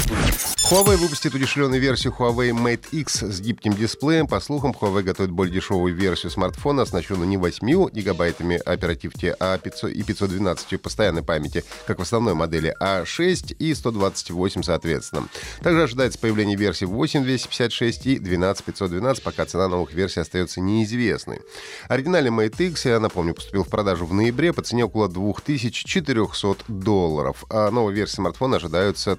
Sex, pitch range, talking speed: male, 90-125 Hz, 145 wpm